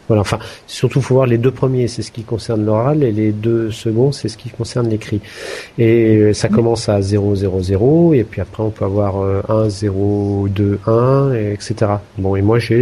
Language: English